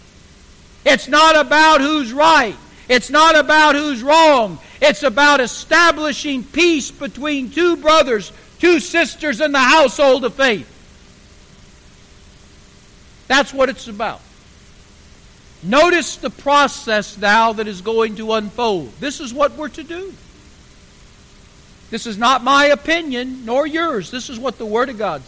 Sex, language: male, English